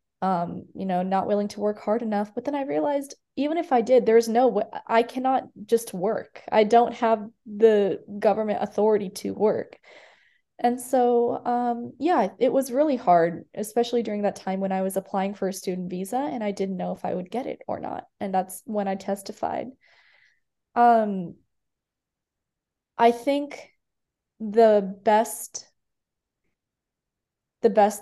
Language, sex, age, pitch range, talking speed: English, female, 20-39, 195-235 Hz, 160 wpm